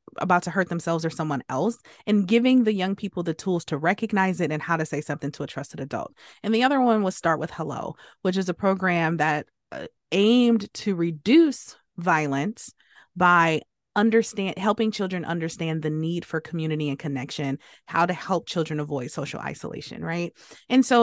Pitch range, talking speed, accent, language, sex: 155-210 Hz, 185 wpm, American, English, female